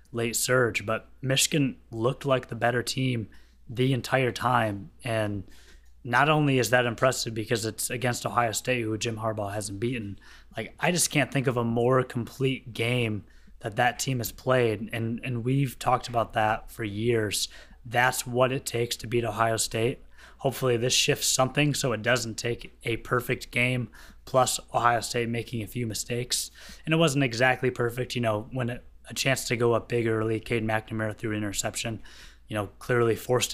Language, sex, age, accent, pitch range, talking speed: English, male, 20-39, American, 105-125 Hz, 180 wpm